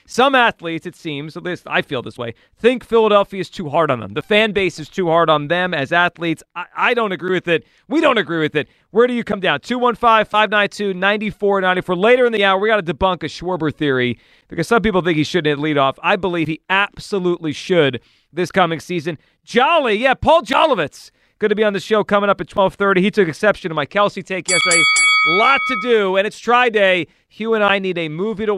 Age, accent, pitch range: 40-59, American, 155-205 Hz